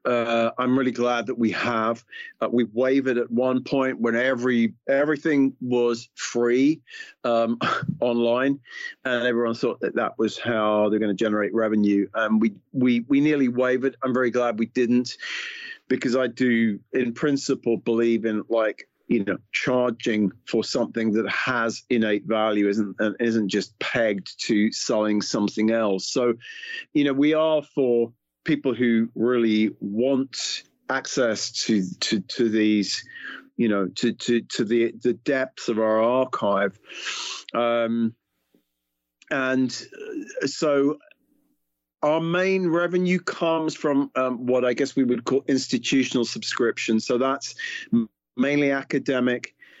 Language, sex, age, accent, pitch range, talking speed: English, male, 40-59, British, 115-135 Hz, 140 wpm